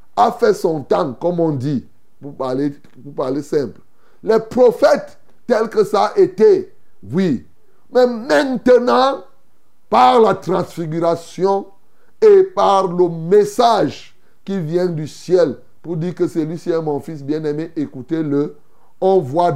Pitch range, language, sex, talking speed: 160-245 Hz, French, male, 135 wpm